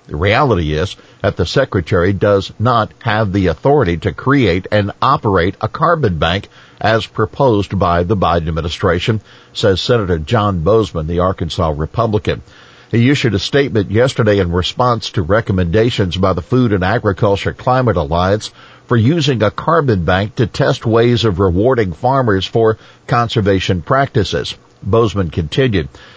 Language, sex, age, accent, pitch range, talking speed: English, male, 50-69, American, 95-125 Hz, 145 wpm